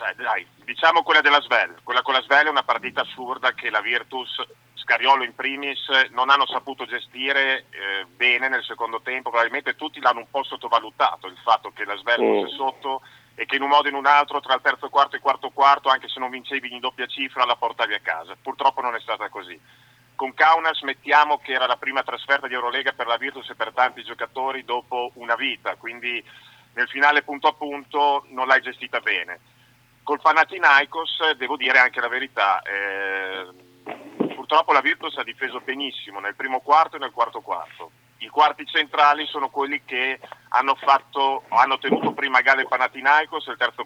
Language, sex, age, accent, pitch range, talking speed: Italian, male, 40-59, native, 120-140 Hz, 195 wpm